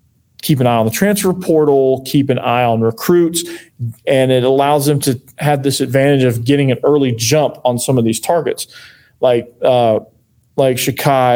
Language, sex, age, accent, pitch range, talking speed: English, male, 40-59, American, 120-140 Hz, 180 wpm